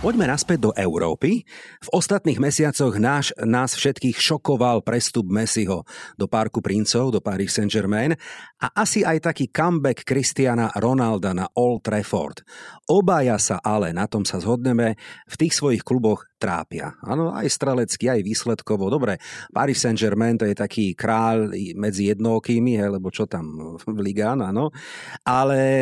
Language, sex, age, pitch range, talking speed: Slovak, male, 40-59, 105-140 Hz, 145 wpm